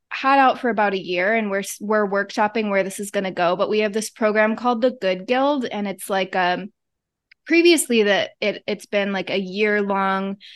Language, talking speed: English, 215 wpm